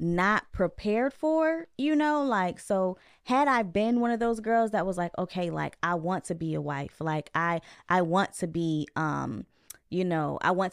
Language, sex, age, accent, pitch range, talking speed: English, female, 20-39, American, 170-215 Hz, 200 wpm